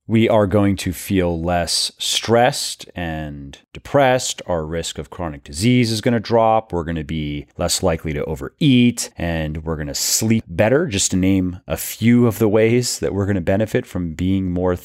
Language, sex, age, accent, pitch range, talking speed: English, male, 30-49, American, 80-115 Hz, 195 wpm